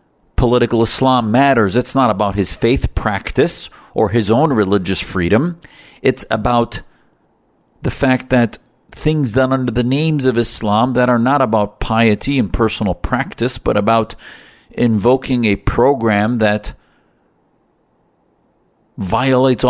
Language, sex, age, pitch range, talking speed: English, male, 50-69, 80-115 Hz, 125 wpm